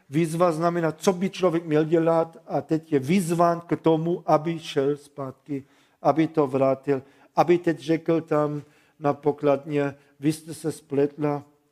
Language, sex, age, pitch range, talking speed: Czech, male, 50-69, 140-155 Hz, 150 wpm